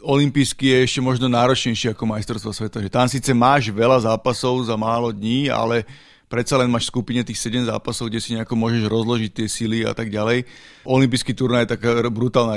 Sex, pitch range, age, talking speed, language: male, 110-125 Hz, 30-49, 190 wpm, Slovak